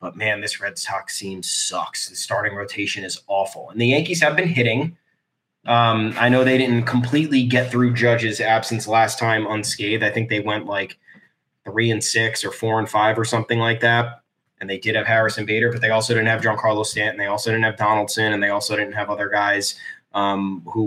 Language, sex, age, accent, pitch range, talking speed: English, male, 20-39, American, 110-160 Hz, 215 wpm